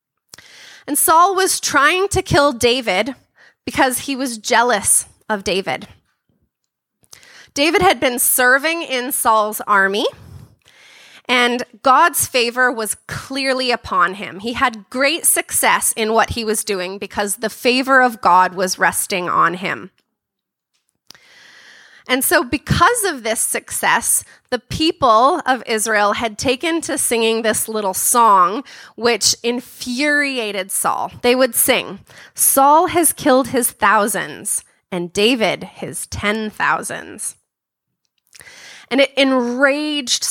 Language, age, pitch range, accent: English, 20-39, 215-275 Hz, American